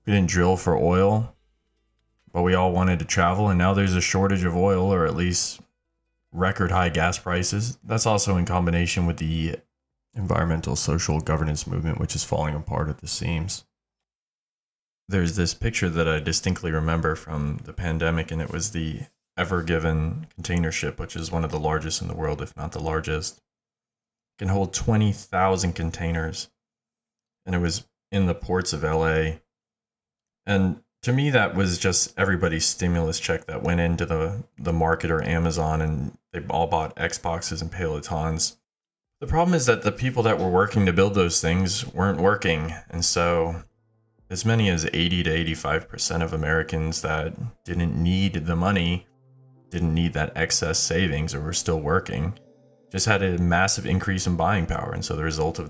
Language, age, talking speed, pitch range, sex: English, 20-39, 175 wpm, 80-95 Hz, male